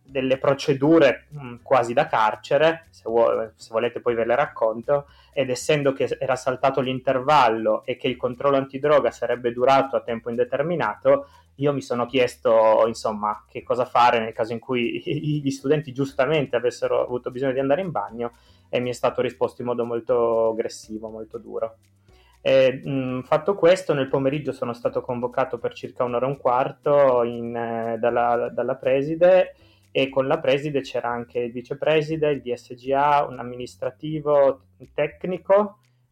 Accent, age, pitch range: native, 20-39, 120-140 Hz